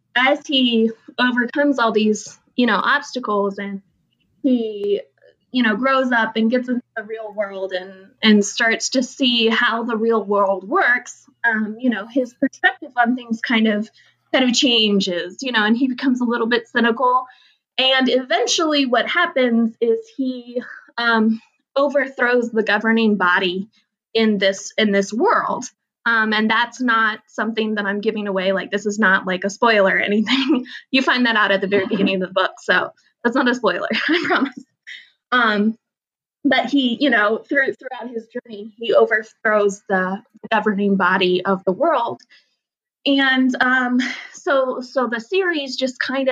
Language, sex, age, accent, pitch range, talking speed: English, female, 20-39, American, 215-260 Hz, 165 wpm